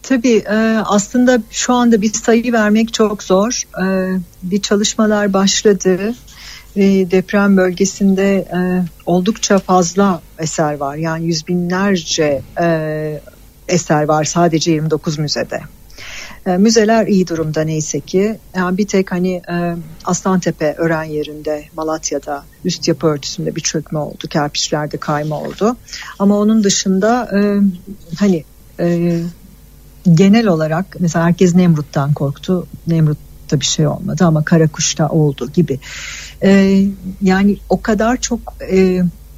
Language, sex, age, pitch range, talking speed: Turkish, female, 60-79, 160-205 Hz, 110 wpm